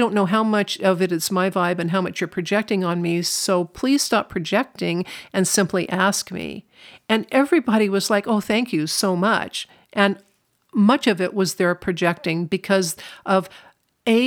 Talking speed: 180 wpm